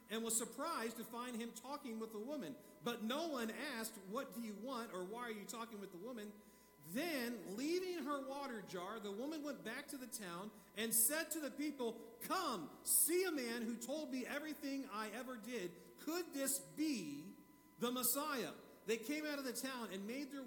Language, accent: English, American